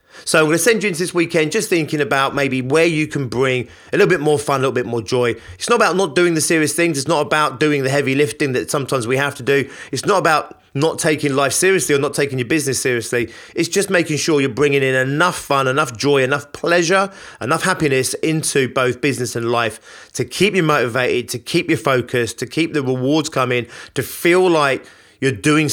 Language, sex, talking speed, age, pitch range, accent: English, male, 230 wpm, 30-49, 125-155 Hz, British